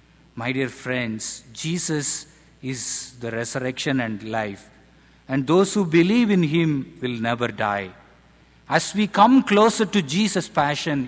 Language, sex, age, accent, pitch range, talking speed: English, male, 50-69, Indian, 130-180 Hz, 135 wpm